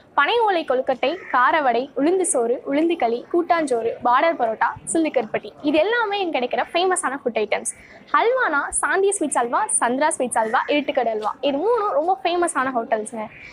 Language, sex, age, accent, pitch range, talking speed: Tamil, female, 20-39, native, 245-360 Hz, 135 wpm